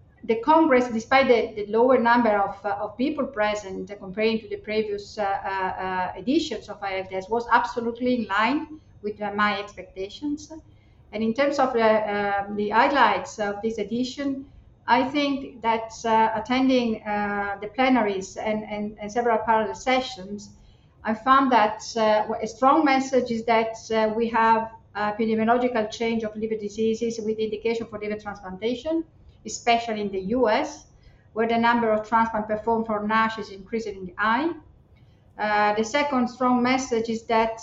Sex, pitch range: female, 210-240 Hz